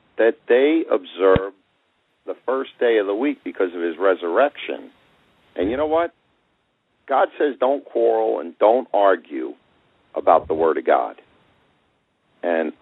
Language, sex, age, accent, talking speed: English, male, 50-69, American, 140 wpm